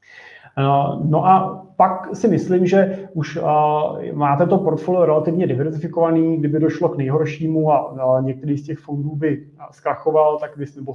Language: Czech